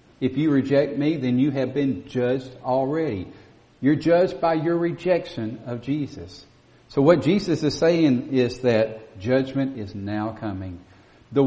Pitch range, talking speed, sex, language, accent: 115-155 Hz, 150 wpm, male, English, American